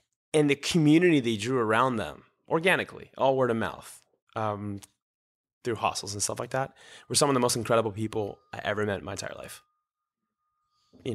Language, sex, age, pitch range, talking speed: English, male, 20-39, 105-140 Hz, 185 wpm